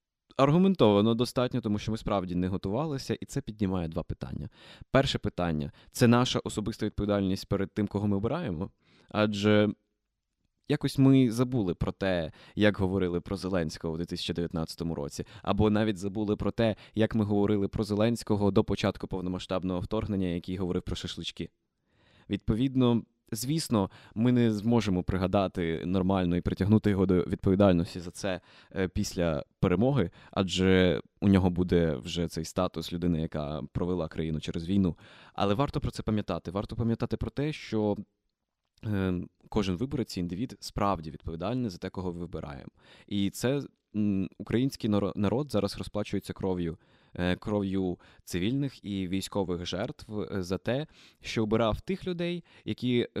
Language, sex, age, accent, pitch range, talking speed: Ukrainian, male, 20-39, native, 90-110 Hz, 140 wpm